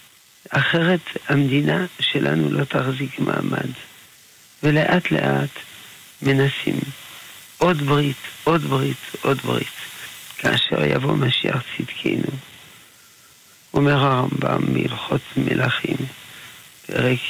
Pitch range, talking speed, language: 125-155 Hz, 85 wpm, Hebrew